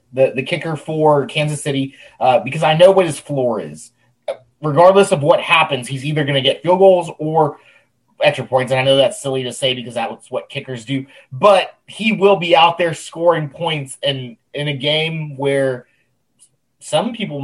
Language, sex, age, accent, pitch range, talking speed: English, male, 30-49, American, 135-185 Hz, 190 wpm